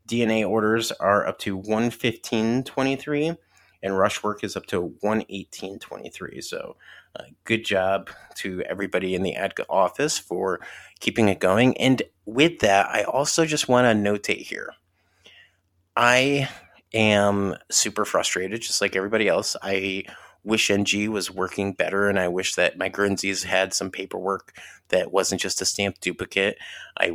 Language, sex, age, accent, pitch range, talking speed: English, male, 30-49, American, 95-110 Hz, 160 wpm